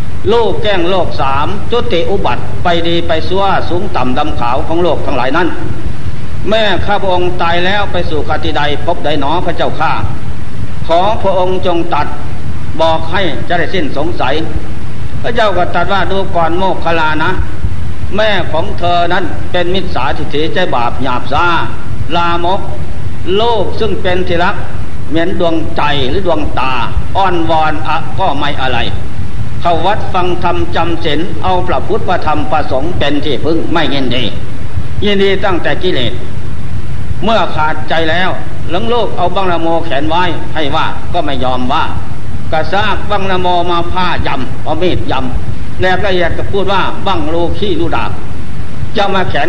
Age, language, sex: 60-79, Thai, male